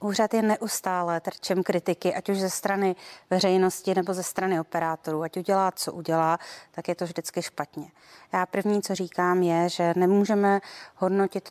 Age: 30-49